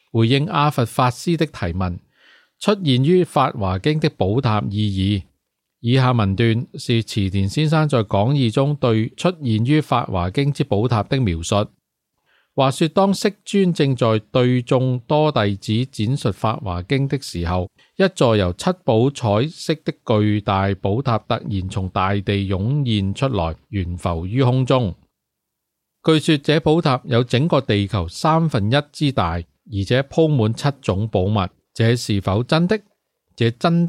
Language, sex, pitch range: English, male, 100-145 Hz